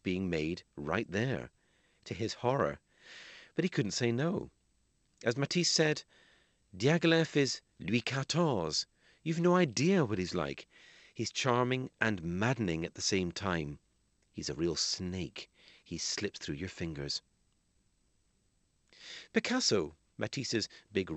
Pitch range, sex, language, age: 95-125 Hz, male, English, 40-59